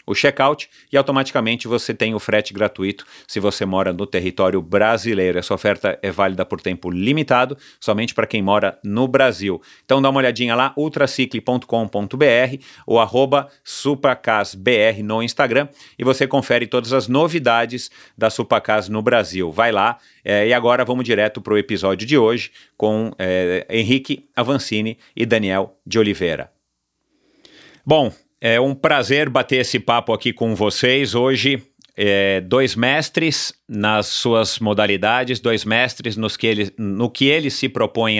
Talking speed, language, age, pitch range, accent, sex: 150 wpm, Portuguese, 40-59, 100-125 Hz, Brazilian, male